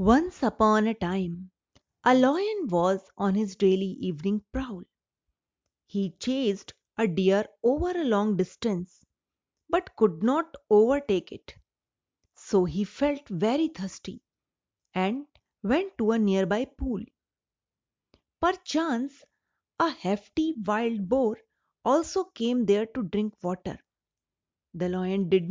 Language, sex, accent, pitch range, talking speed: English, female, Indian, 195-265 Hz, 120 wpm